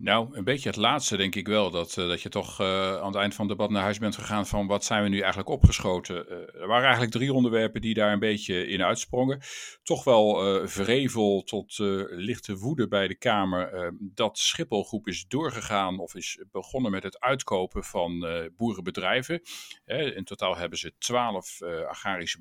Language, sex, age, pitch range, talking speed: Dutch, male, 50-69, 95-125 Hz, 205 wpm